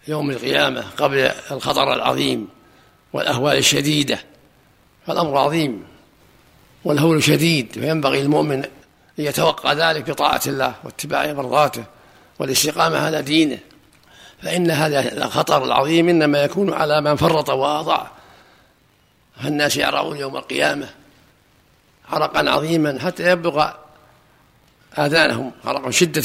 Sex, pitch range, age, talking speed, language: male, 140-160 Hz, 60-79, 105 wpm, Arabic